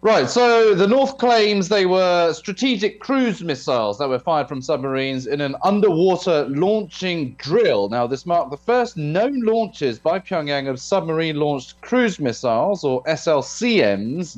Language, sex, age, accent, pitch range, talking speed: English, male, 30-49, British, 135-185 Hz, 145 wpm